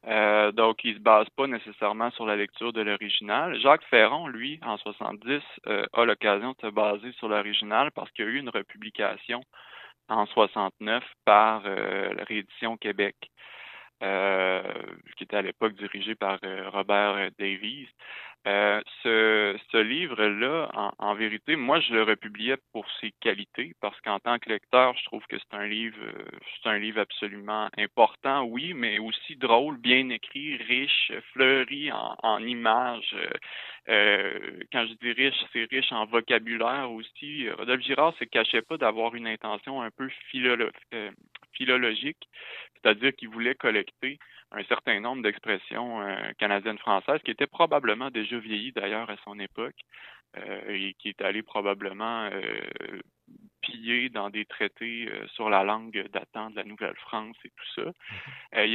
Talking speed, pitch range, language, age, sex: 160 wpm, 105-120 Hz, French, 20-39, male